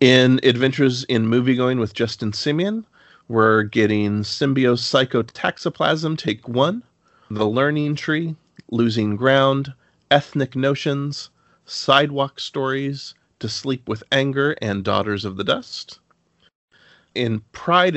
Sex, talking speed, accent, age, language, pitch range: male, 110 wpm, American, 40-59, English, 115-155 Hz